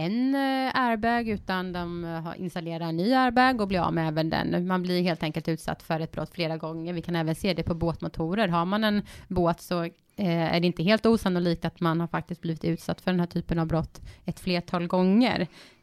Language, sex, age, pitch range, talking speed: Swedish, female, 20-39, 170-190 Hz, 210 wpm